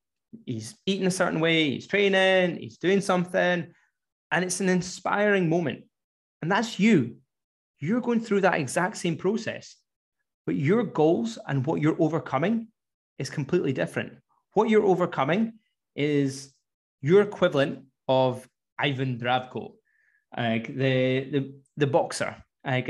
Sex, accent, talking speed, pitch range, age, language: male, British, 130 wpm, 135-190 Hz, 20-39, English